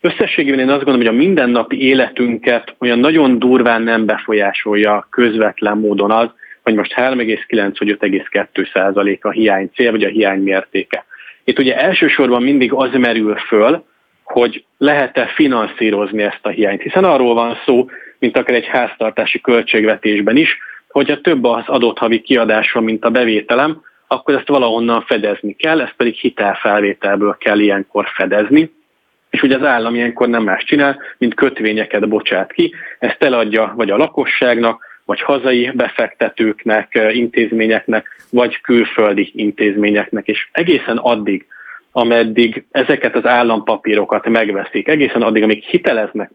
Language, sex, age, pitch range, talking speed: Hungarian, male, 30-49, 105-125 Hz, 135 wpm